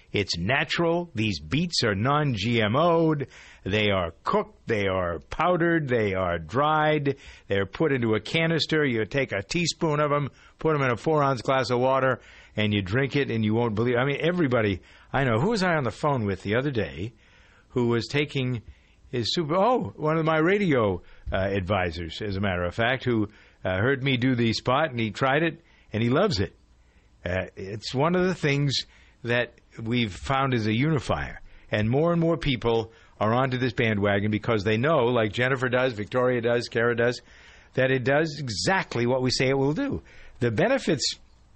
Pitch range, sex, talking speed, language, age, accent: 105-145 Hz, male, 190 wpm, English, 60-79, American